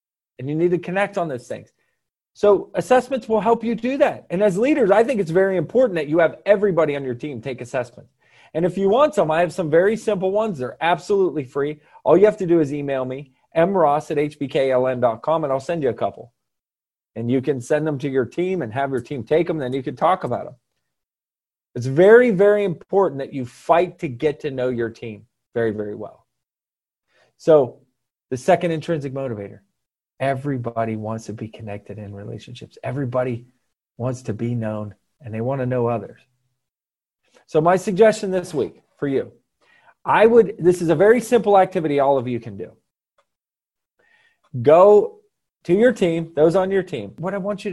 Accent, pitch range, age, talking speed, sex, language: American, 130-185 Hz, 30-49, 195 wpm, male, English